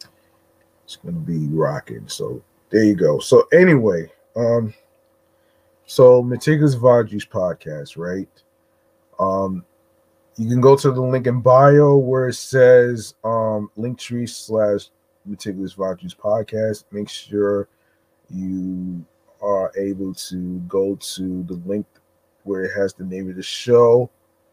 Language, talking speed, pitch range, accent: English, 125 wpm, 95-125 Hz, American